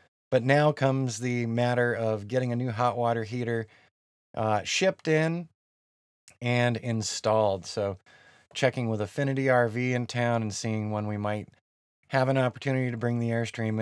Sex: male